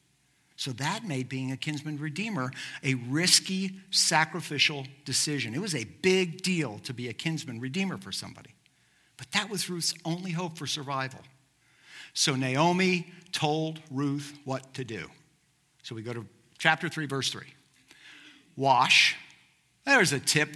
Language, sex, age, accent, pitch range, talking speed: English, male, 50-69, American, 140-185 Hz, 145 wpm